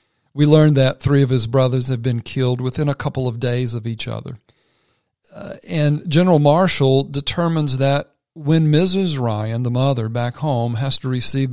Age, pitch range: 50-69, 120-145 Hz